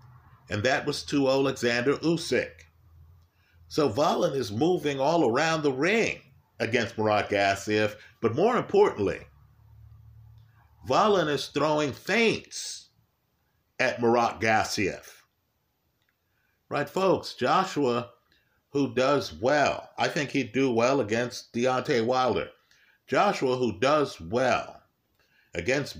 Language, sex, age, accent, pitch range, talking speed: English, male, 50-69, American, 110-135 Hz, 105 wpm